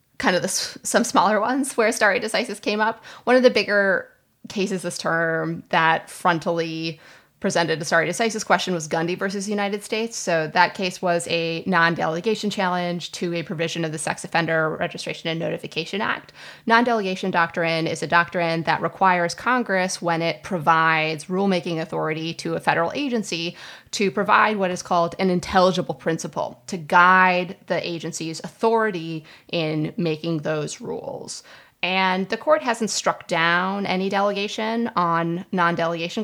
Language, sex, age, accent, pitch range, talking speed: English, female, 30-49, American, 165-205 Hz, 155 wpm